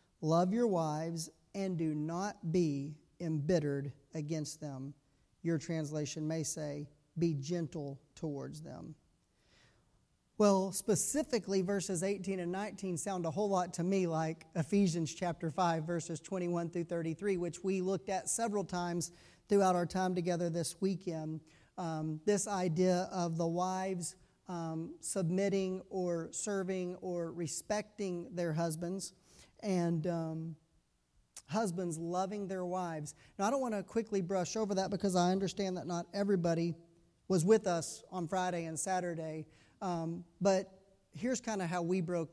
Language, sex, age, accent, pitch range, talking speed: English, male, 40-59, American, 165-195 Hz, 140 wpm